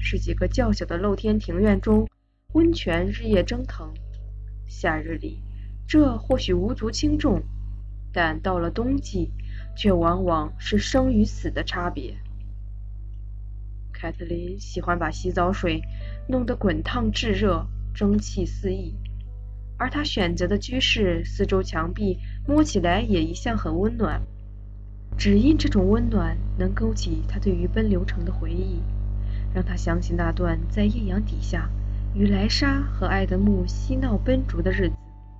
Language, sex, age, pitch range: Chinese, female, 20-39, 95-105 Hz